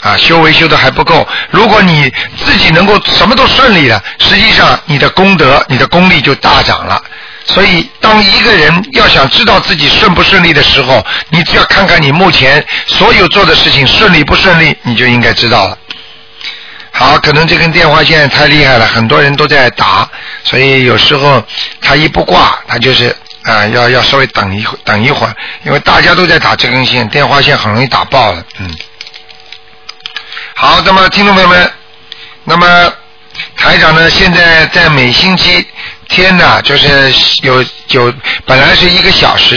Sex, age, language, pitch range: male, 50-69, Chinese, 125-165 Hz